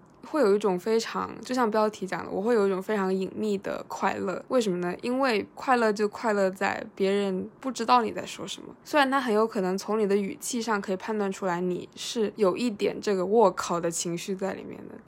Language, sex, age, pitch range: Chinese, female, 20-39, 185-220 Hz